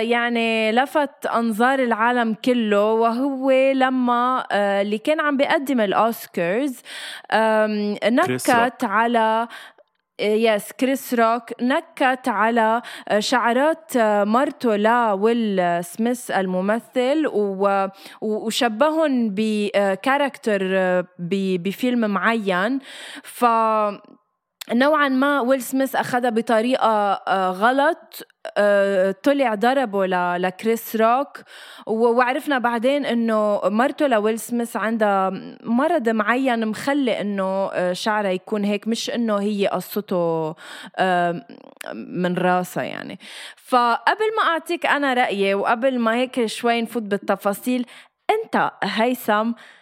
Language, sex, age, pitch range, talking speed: Arabic, female, 20-39, 205-255 Hz, 90 wpm